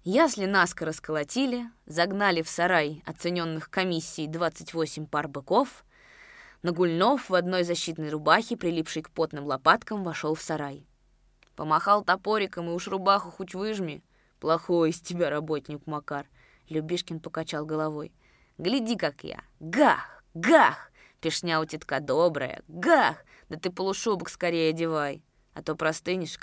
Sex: female